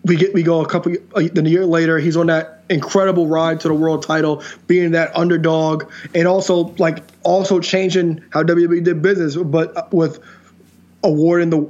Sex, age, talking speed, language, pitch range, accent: male, 20-39, 180 wpm, English, 155-175 Hz, American